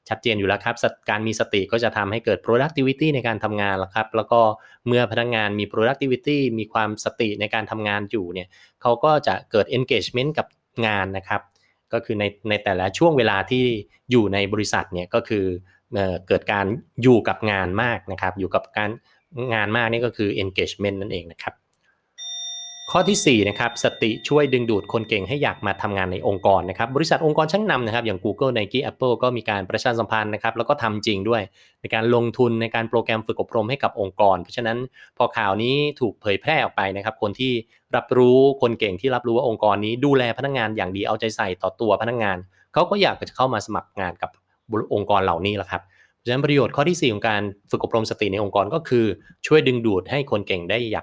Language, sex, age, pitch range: Thai, male, 20-39, 100-125 Hz